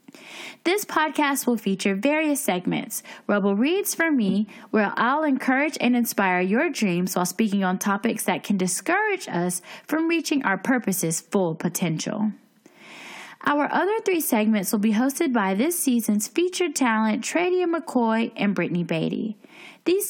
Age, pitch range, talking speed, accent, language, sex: 10-29, 200-300 Hz, 145 wpm, American, English, female